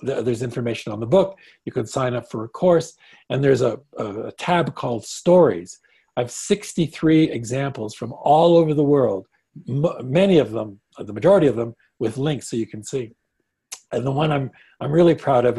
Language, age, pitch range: English, 60-79, 115-150 Hz